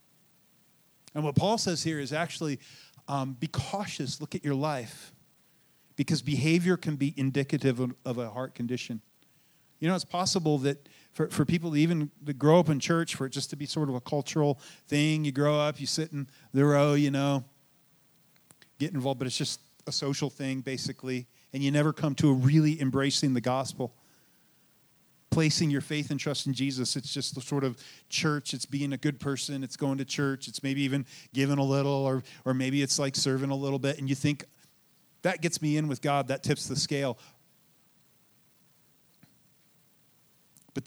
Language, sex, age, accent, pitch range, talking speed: English, male, 40-59, American, 135-150 Hz, 190 wpm